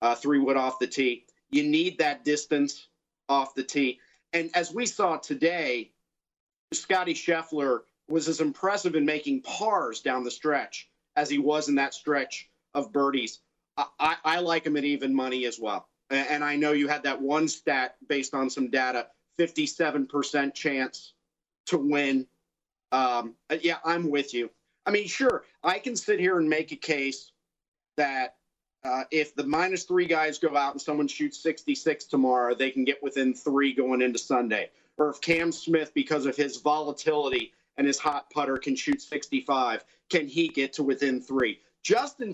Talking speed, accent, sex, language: 170 wpm, American, male, English